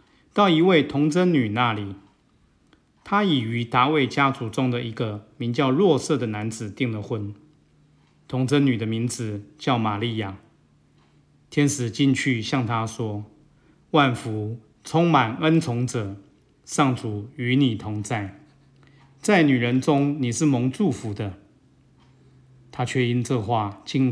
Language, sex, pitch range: Chinese, male, 110-140 Hz